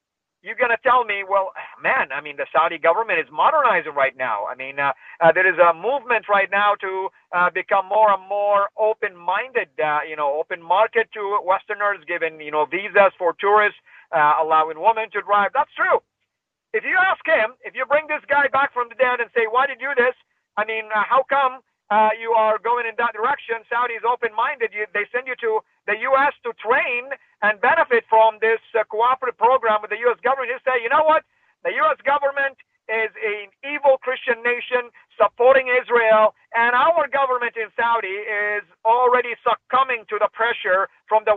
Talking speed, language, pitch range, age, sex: 195 wpm, English, 205-255 Hz, 50-69, male